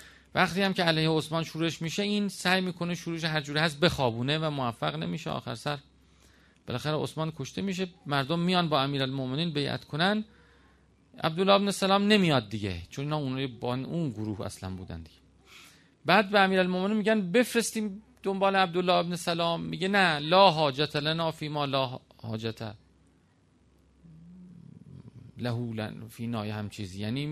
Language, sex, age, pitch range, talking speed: Persian, male, 40-59, 115-180 Hz, 150 wpm